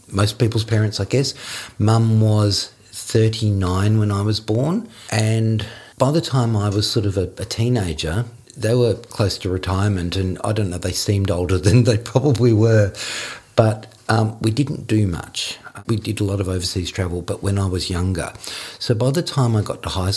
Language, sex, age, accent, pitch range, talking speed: English, male, 50-69, Australian, 95-110 Hz, 195 wpm